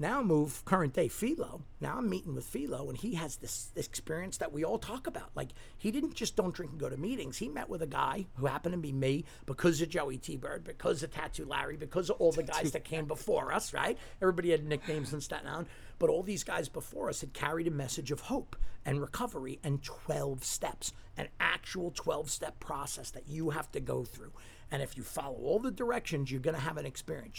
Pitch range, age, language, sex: 135-180 Hz, 50-69, English, male